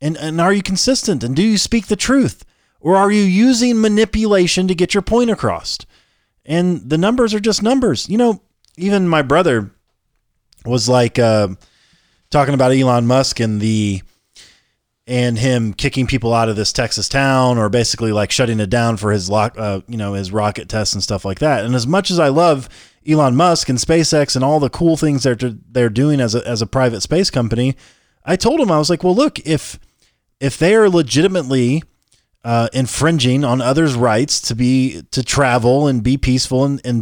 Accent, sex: American, male